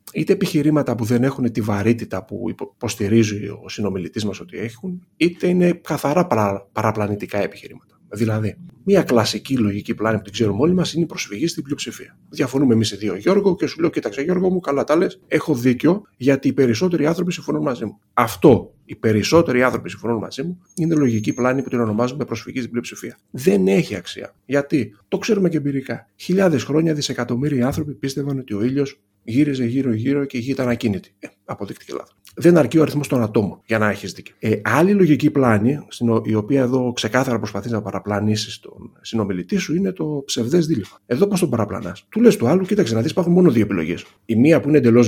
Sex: male